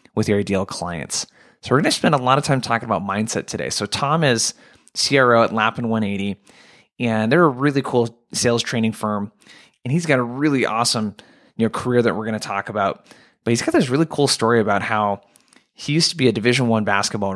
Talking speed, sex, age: 215 wpm, male, 20-39